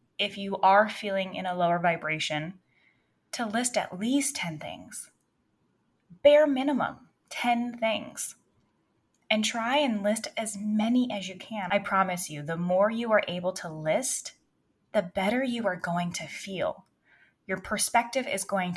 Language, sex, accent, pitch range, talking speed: English, female, American, 175-210 Hz, 155 wpm